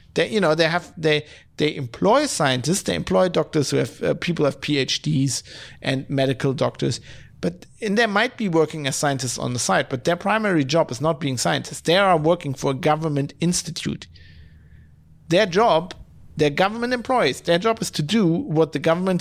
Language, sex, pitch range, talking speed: English, male, 135-180 Hz, 185 wpm